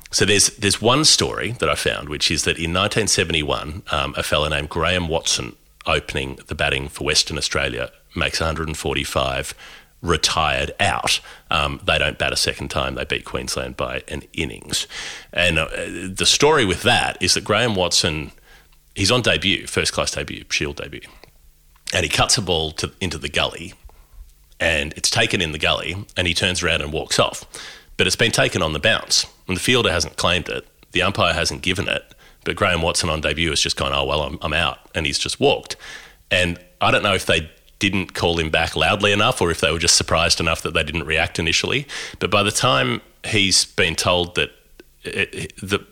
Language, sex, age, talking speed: English, male, 30-49, 195 wpm